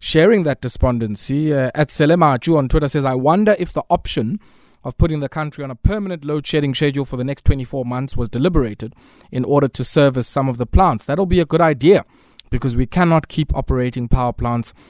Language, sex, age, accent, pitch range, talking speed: English, male, 20-39, South African, 125-165 Hz, 210 wpm